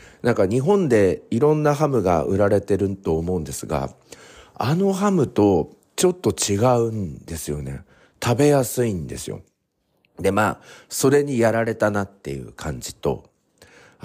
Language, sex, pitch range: Japanese, male, 80-135 Hz